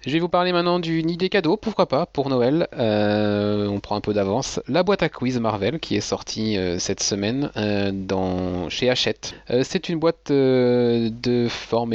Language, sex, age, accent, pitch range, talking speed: French, male, 30-49, French, 95-115 Hz, 200 wpm